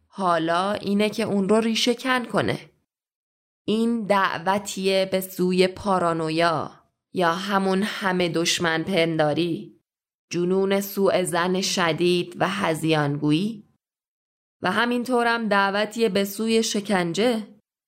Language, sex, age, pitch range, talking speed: Persian, female, 20-39, 180-225 Hz, 100 wpm